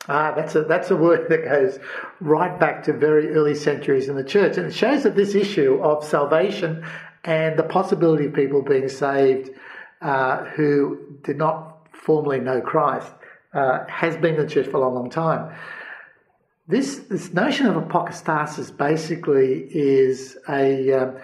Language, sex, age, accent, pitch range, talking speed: English, male, 60-79, Australian, 140-180 Hz, 165 wpm